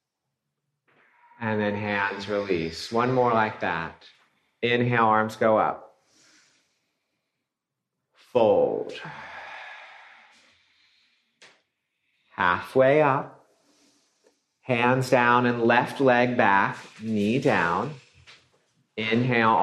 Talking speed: 75 wpm